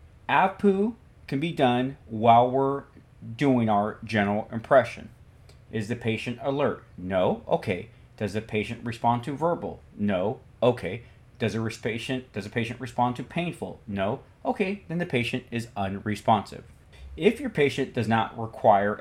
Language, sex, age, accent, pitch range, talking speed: English, male, 40-59, American, 115-145 Hz, 140 wpm